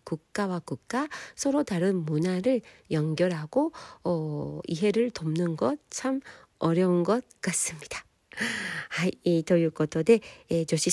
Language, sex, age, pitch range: Korean, female, 50-69, 155-225 Hz